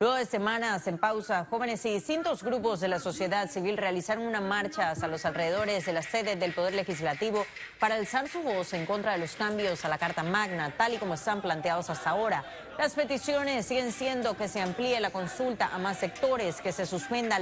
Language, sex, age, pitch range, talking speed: Spanish, female, 30-49, 185-235 Hz, 205 wpm